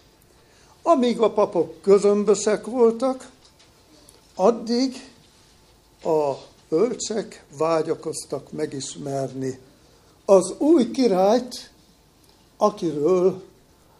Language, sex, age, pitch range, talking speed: Hungarian, male, 60-79, 145-230 Hz, 60 wpm